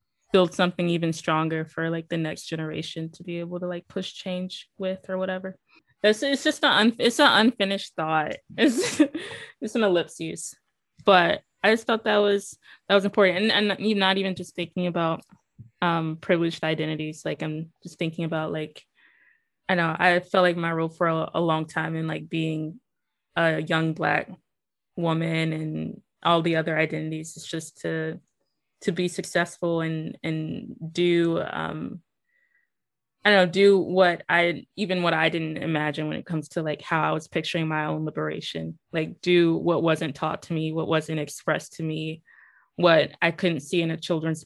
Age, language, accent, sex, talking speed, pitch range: 20-39, English, American, female, 180 wpm, 160-190 Hz